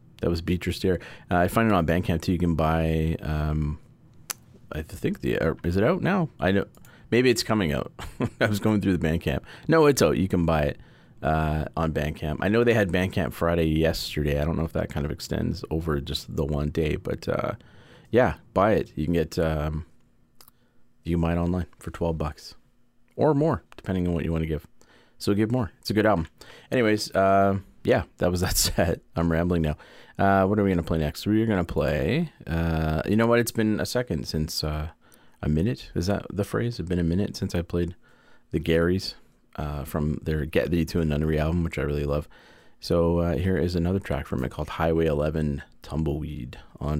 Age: 30-49